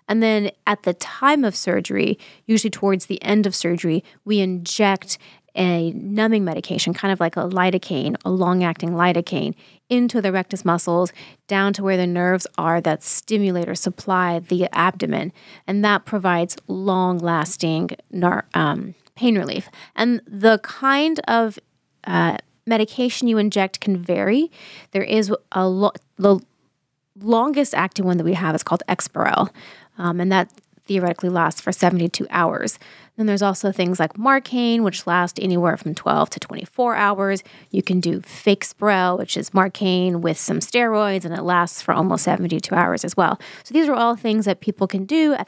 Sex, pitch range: female, 175-210 Hz